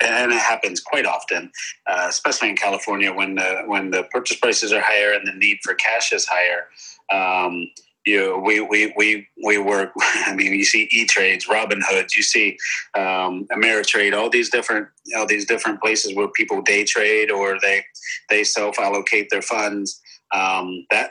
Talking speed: 180 wpm